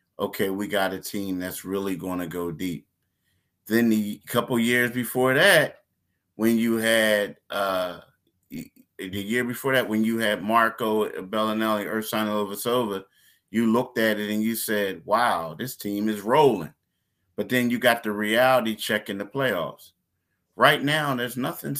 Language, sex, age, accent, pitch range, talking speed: English, male, 30-49, American, 100-120 Hz, 155 wpm